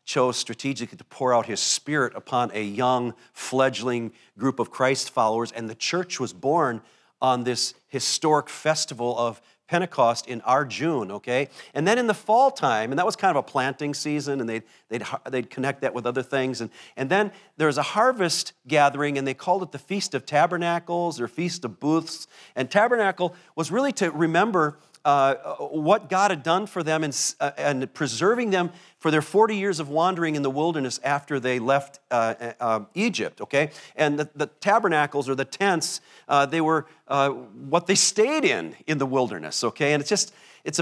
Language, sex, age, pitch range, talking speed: English, male, 50-69, 130-175 Hz, 190 wpm